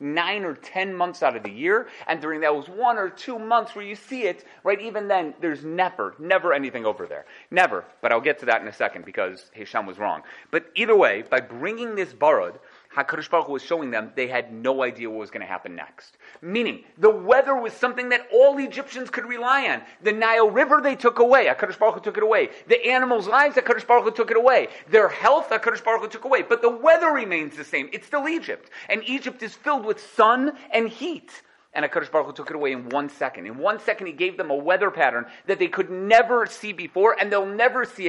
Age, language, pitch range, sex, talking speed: 30-49, English, 155-250 Hz, male, 235 wpm